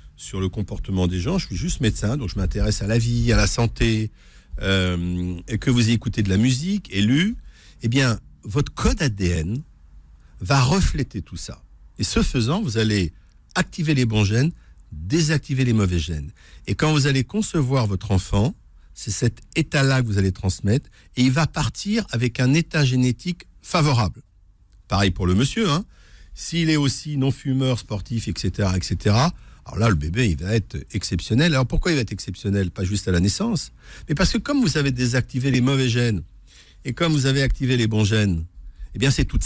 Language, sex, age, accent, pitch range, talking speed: French, male, 50-69, French, 95-135 Hz, 190 wpm